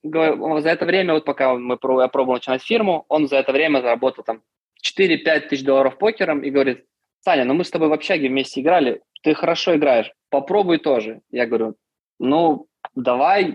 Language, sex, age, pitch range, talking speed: Russian, male, 20-39, 125-150 Hz, 175 wpm